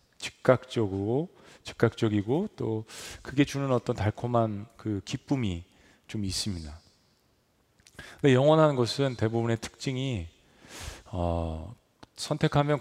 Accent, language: native, Korean